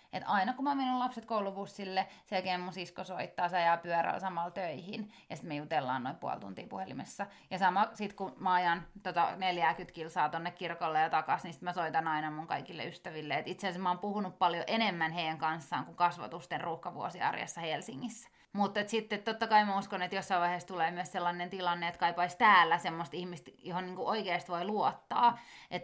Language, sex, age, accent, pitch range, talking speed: Finnish, female, 30-49, native, 175-210 Hz, 195 wpm